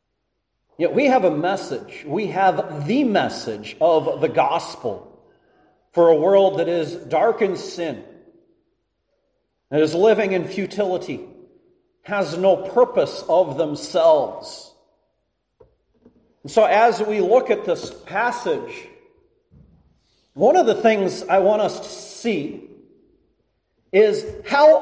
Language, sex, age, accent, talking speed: English, male, 40-59, American, 115 wpm